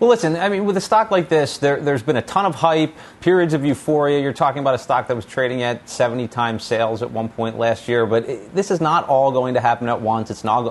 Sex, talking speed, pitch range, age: male, 275 wpm, 105-125 Hz, 30-49